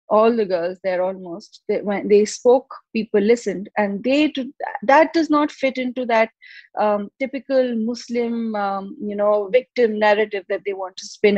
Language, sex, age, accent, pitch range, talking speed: English, female, 30-49, Indian, 205-250 Hz, 180 wpm